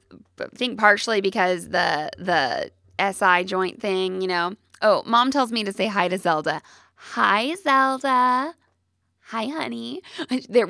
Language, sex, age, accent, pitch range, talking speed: English, female, 20-39, American, 170-240 Hz, 145 wpm